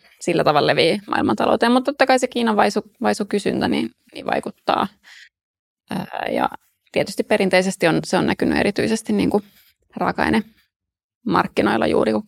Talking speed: 125 wpm